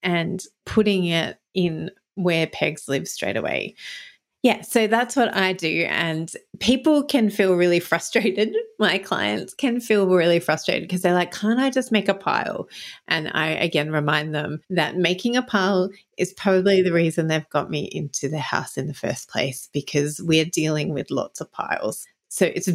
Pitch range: 160-190 Hz